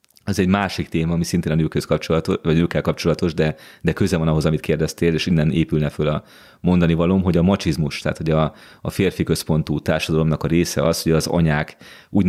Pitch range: 80-95 Hz